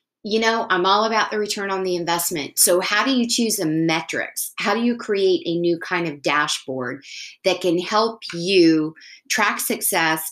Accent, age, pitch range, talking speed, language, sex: American, 30-49, 155-195 Hz, 185 wpm, English, female